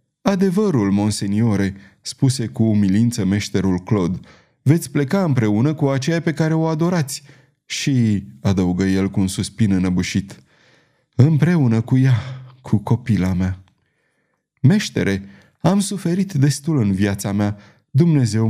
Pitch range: 105-140 Hz